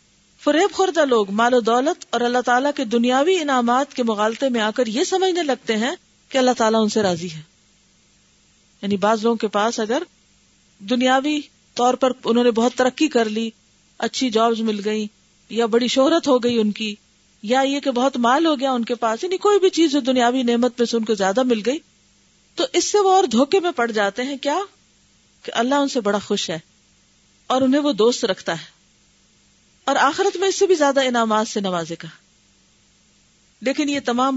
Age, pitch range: 40-59, 215-270 Hz